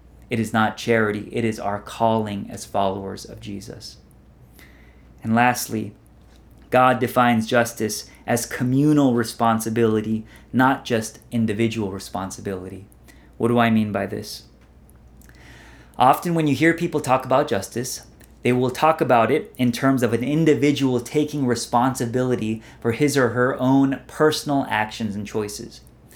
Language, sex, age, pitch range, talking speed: English, male, 30-49, 115-135 Hz, 135 wpm